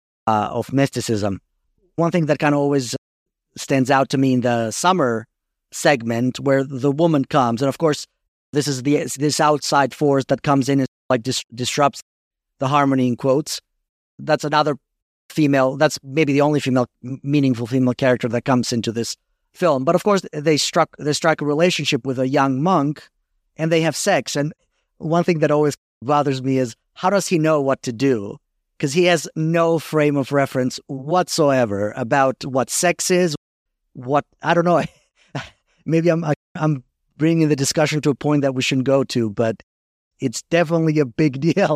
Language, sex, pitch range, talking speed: English, male, 130-165 Hz, 180 wpm